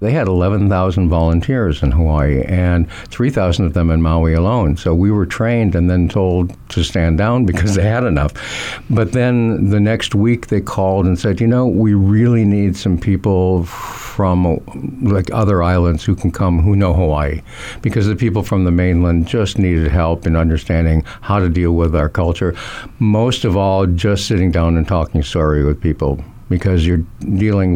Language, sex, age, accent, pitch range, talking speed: English, male, 60-79, American, 85-105 Hz, 180 wpm